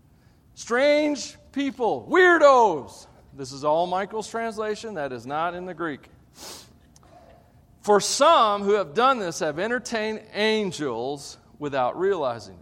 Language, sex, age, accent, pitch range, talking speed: English, male, 40-59, American, 160-245 Hz, 120 wpm